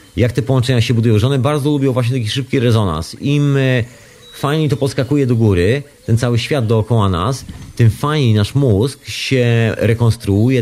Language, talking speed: Polish, 170 wpm